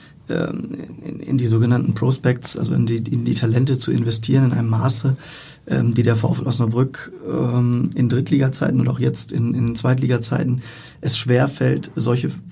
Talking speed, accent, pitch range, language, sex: 175 wpm, German, 120-135 Hz, German, male